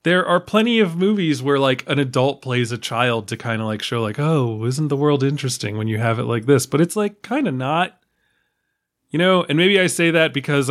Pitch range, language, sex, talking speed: 130-200 Hz, English, male, 240 wpm